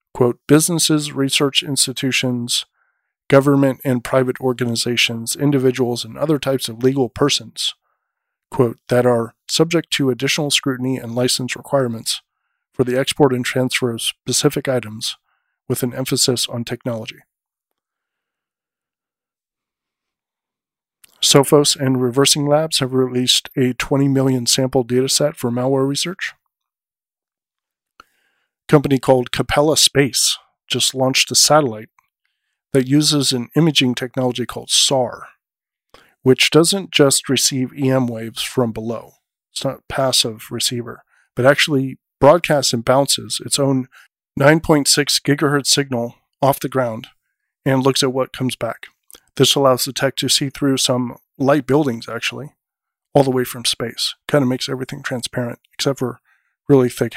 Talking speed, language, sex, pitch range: 130 wpm, English, male, 125-140 Hz